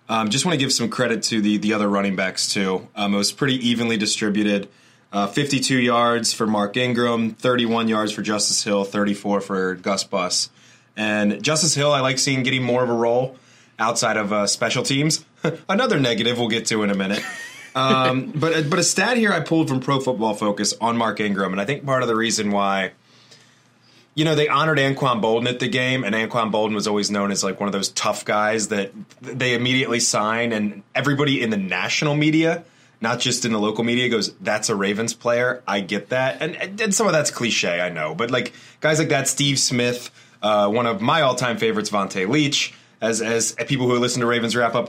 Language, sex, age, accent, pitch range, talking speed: English, male, 20-39, American, 105-135 Hz, 220 wpm